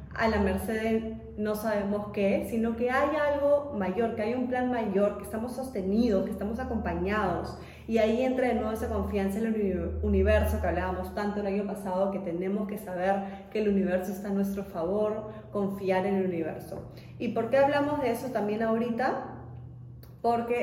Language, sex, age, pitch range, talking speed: Spanish, female, 30-49, 195-240 Hz, 185 wpm